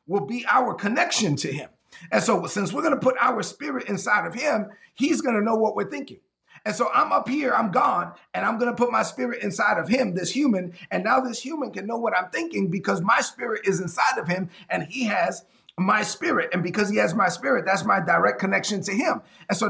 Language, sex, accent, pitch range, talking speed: English, male, American, 185-255 Hz, 240 wpm